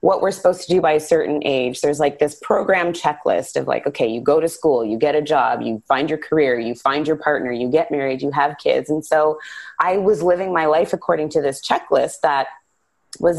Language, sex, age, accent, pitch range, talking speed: English, female, 20-39, American, 150-185 Hz, 235 wpm